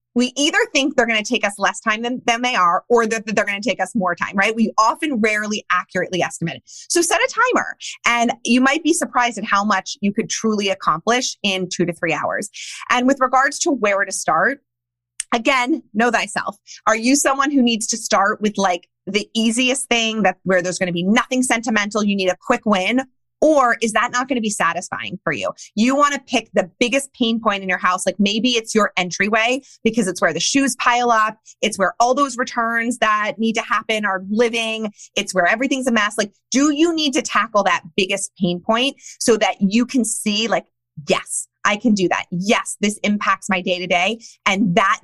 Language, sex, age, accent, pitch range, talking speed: English, female, 20-39, American, 190-245 Hz, 215 wpm